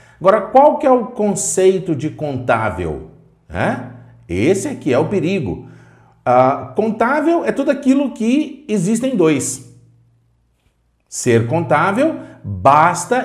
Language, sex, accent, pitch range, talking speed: Portuguese, male, Brazilian, 115-180 Hz, 110 wpm